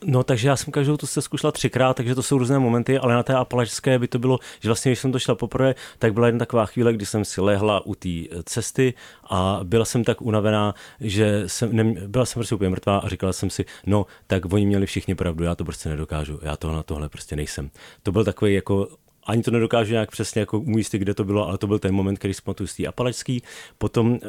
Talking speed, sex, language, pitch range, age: 235 wpm, male, Czech, 95-115 Hz, 30-49